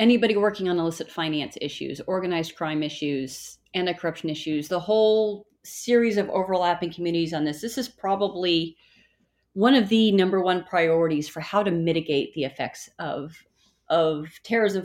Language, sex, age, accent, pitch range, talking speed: English, female, 30-49, American, 155-185 Hz, 150 wpm